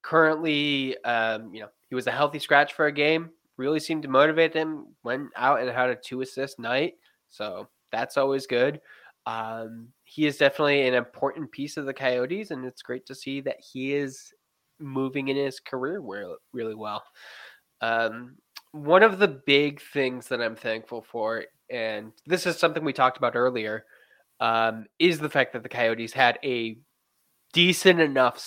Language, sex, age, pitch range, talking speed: English, male, 10-29, 120-150 Hz, 170 wpm